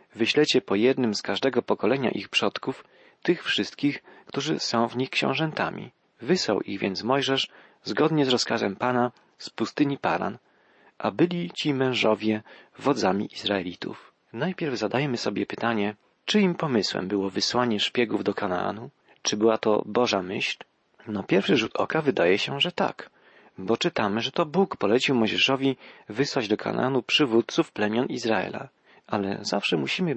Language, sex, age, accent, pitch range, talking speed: Polish, male, 40-59, native, 105-140 Hz, 145 wpm